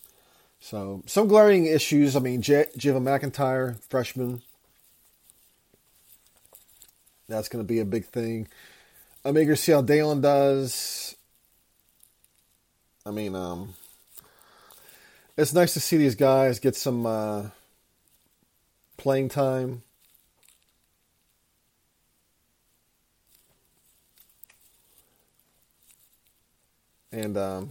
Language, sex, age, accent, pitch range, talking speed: English, male, 30-49, American, 115-140 Hz, 85 wpm